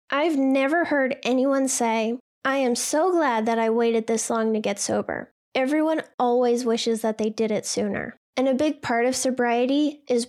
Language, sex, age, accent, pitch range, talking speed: English, female, 10-29, American, 235-275 Hz, 185 wpm